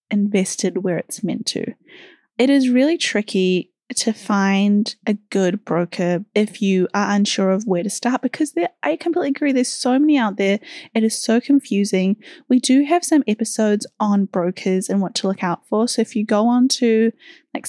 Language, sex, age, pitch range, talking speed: English, female, 10-29, 200-275 Hz, 185 wpm